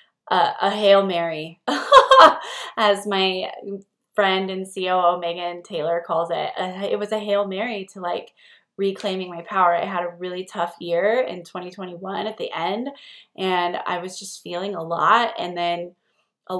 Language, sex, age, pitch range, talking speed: English, female, 20-39, 180-215 Hz, 160 wpm